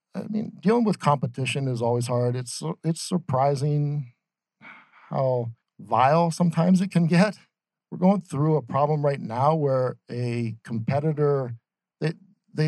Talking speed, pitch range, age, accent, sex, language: 135 wpm, 120-165 Hz, 50-69, American, male, English